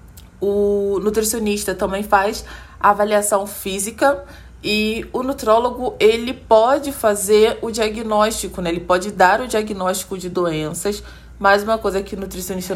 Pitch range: 180-220 Hz